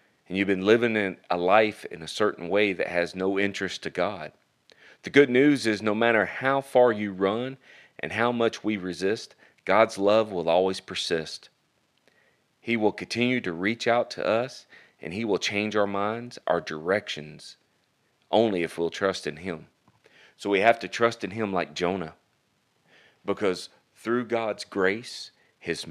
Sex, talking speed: male, 165 wpm